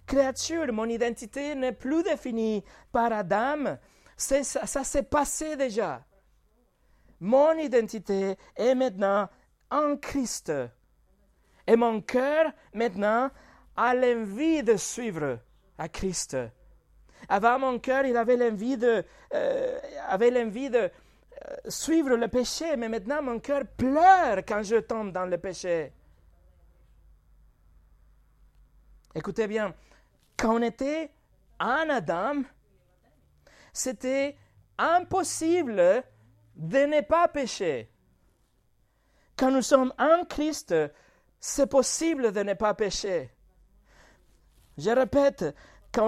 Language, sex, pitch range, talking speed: French, male, 210-285 Hz, 105 wpm